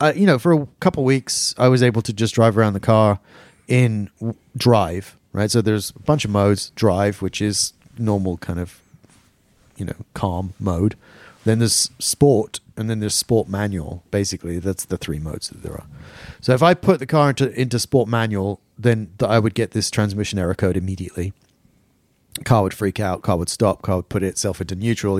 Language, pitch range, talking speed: English, 95-120 Hz, 205 wpm